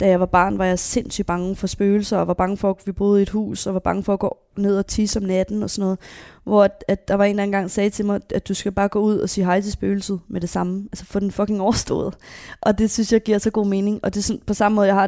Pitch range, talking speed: 190-215 Hz, 320 wpm